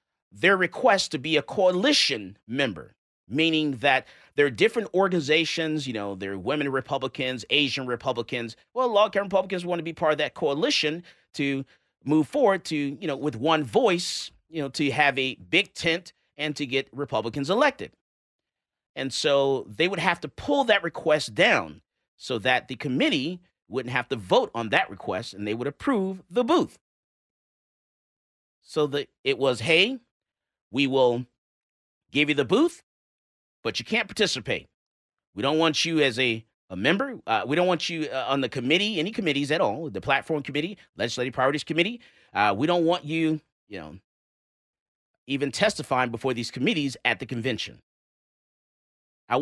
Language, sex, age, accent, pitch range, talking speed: English, male, 40-59, American, 130-170 Hz, 165 wpm